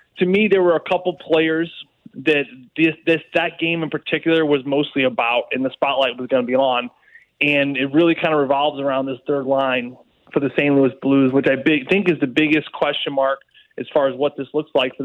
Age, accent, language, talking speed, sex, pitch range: 20-39, American, English, 215 wpm, male, 135-165 Hz